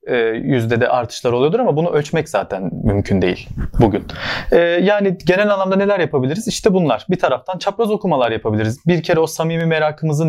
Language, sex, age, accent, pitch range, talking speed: Turkish, male, 40-59, native, 125-165 Hz, 165 wpm